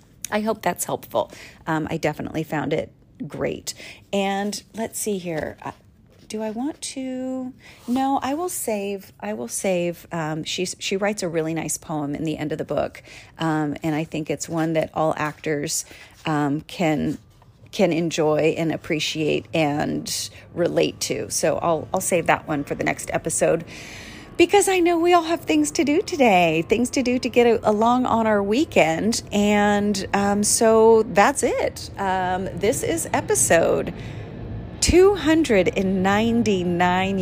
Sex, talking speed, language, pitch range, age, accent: female, 155 wpm, English, 165-220 Hz, 40-59, American